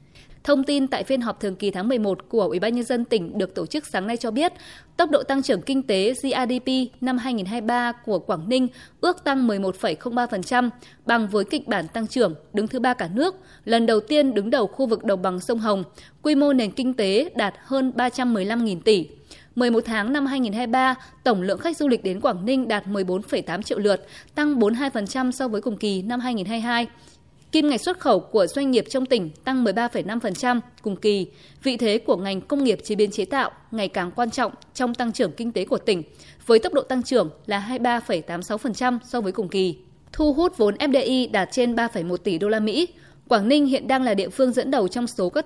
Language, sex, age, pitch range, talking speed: Vietnamese, female, 20-39, 205-260 Hz, 210 wpm